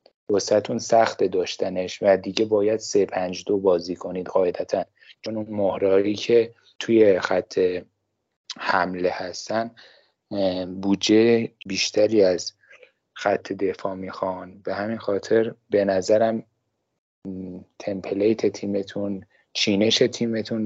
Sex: male